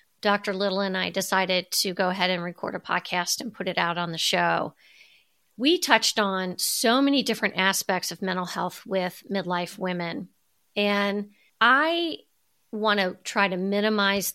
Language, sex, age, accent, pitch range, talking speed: English, female, 50-69, American, 190-230 Hz, 165 wpm